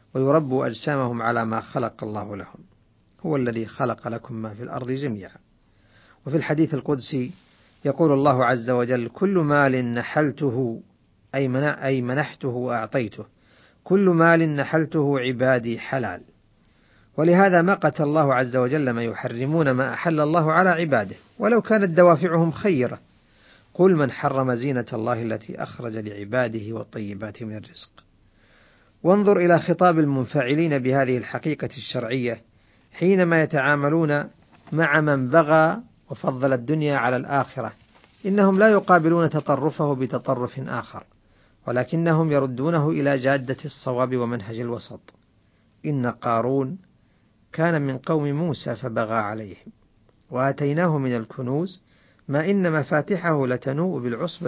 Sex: male